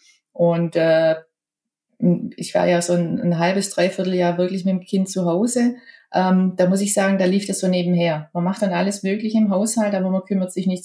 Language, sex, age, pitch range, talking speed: German, female, 30-49, 180-220 Hz, 215 wpm